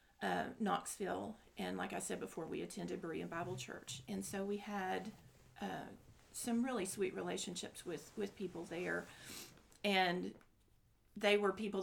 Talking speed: 145 wpm